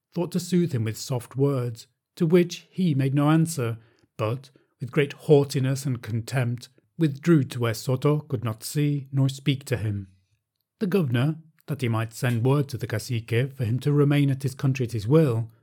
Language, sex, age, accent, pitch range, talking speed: English, male, 40-59, British, 115-145 Hz, 190 wpm